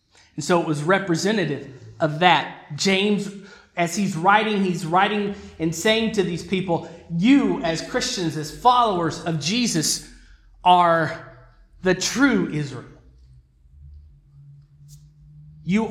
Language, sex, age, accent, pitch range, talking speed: English, male, 30-49, American, 130-185 Hz, 115 wpm